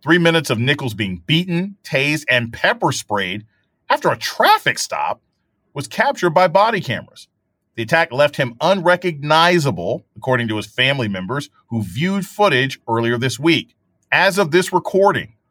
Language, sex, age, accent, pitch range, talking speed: English, male, 40-59, American, 130-180 Hz, 150 wpm